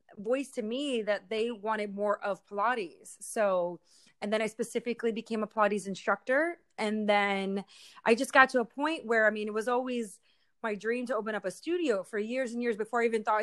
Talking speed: 210 wpm